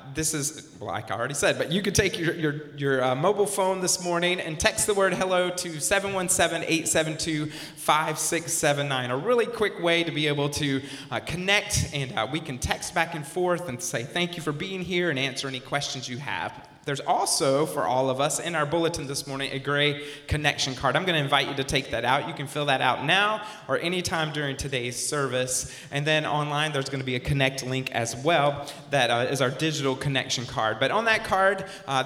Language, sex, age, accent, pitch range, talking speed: English, male, 30-49, American, 130-160 Hz, 215 wpm